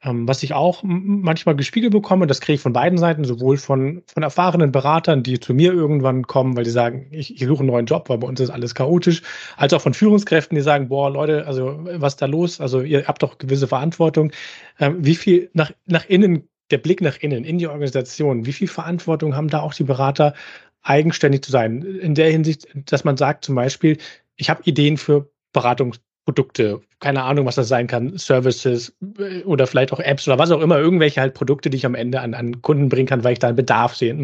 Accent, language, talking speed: German, English, 225 wpm